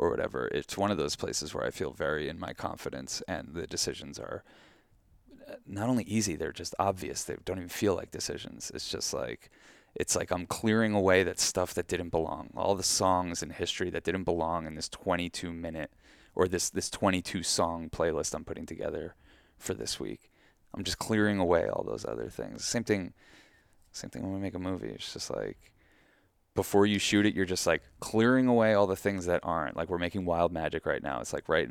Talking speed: 210 wpm